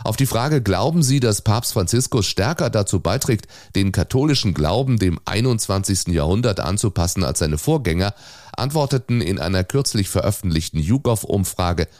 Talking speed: 135 wpm